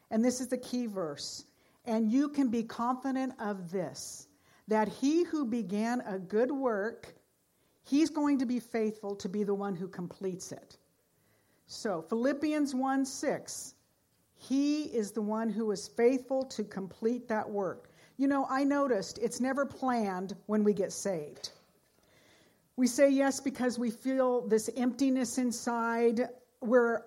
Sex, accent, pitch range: female, American, 215-270 Hz